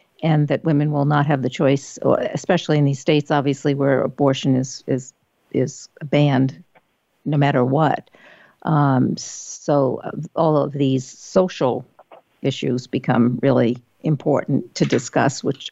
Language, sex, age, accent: English, female, 50-69, American